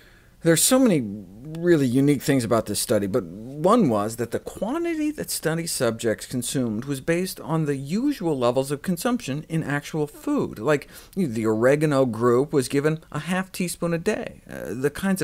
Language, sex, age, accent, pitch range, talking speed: English, male, 50-69, American, 115-160 Hz, 180 wpm